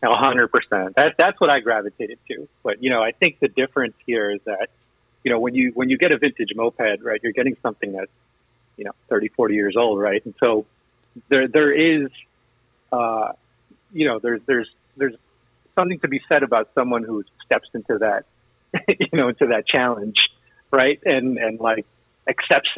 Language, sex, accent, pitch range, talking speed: English, male, American, 110-130 Hz, 185 wpm